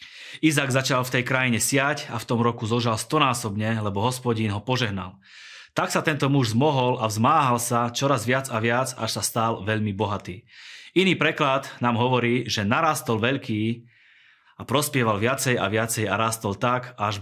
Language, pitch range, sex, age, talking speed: Slovak, 110-130 Hz, male, 20-39, 170 wpm